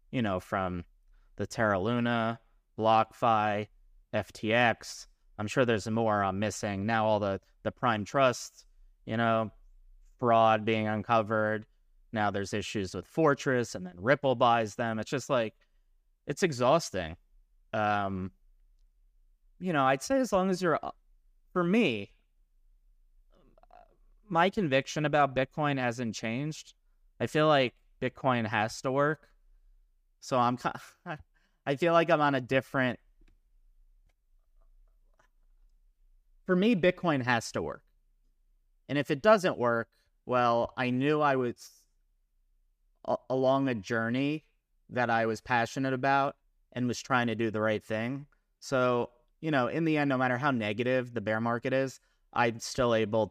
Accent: American